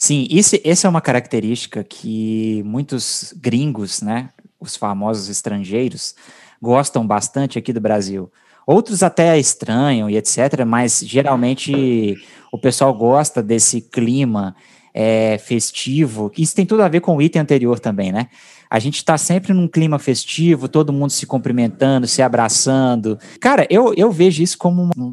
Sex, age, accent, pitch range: male, 20-39, Brazilian, 115-145 Hz